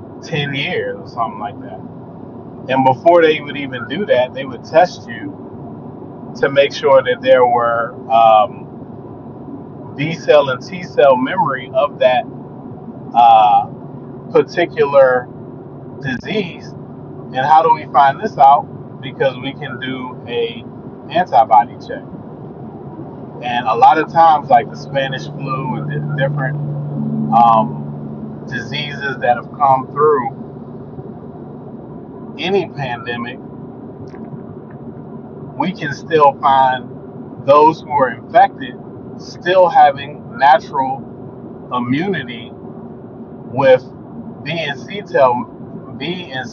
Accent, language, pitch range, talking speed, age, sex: American, English, 125-175 Hz, 110 wpm, 30-49, male